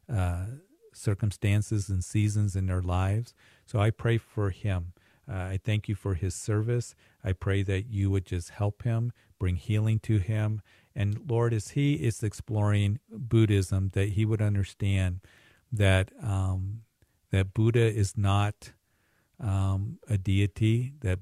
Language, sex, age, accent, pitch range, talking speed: English, male, 50-69, American, 95-110 Hz, 145 wpm